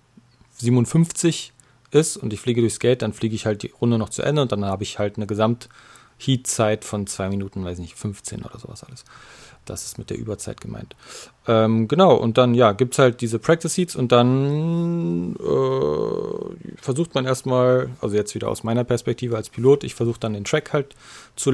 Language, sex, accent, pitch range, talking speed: German, male, German, 110-130 Hz, 190 wpm